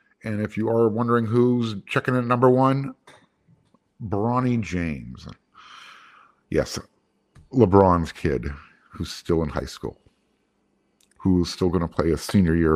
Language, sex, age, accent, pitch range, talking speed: English, male, 50-69, American, 95-130 Hz, 135 wpm